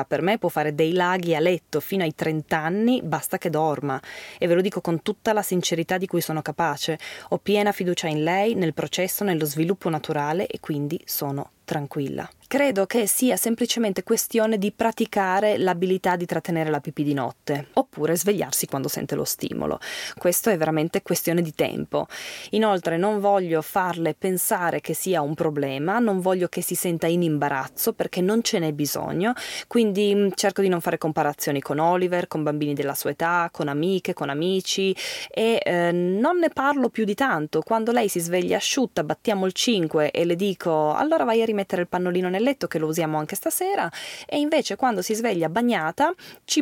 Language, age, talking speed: Italian, 20-39, 185 wpm